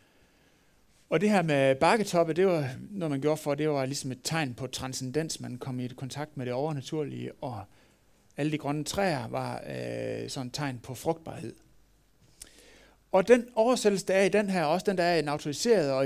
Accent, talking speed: native, 200 wpm